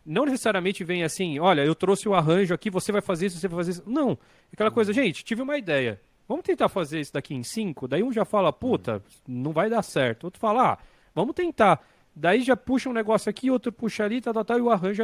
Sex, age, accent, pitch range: male, 40-59, Brazilian, 135-205 Hz